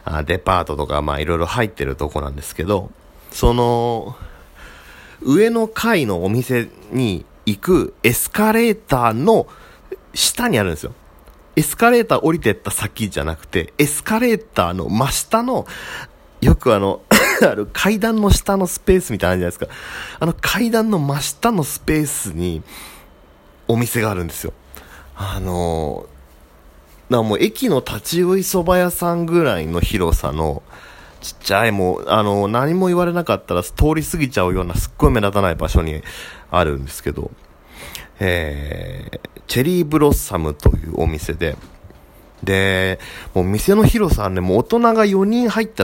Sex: male